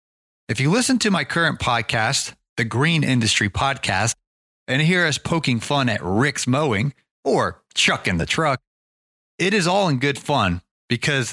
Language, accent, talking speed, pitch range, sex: English, American, 160 wpm, 110-165 Hz, male